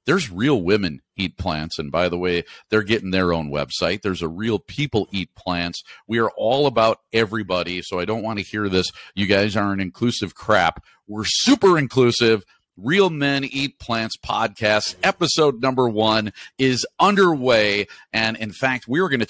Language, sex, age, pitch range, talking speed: English, male, 40-59, 100-130 Hz, 175 wpm